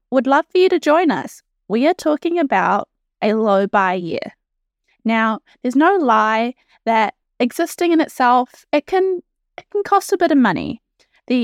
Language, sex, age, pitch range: English, female, 20-39, 215-305 Hz